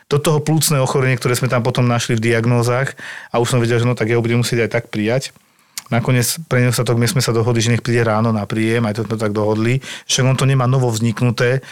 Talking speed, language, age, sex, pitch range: 250 wpm, Slovak, 40-59, male, 115-130 Hz